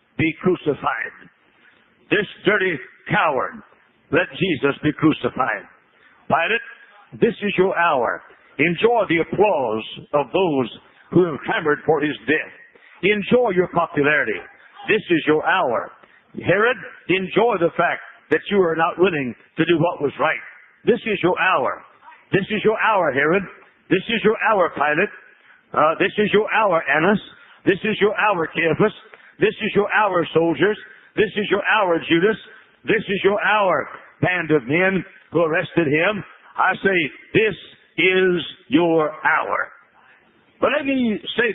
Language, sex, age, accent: English, male, 60-79, American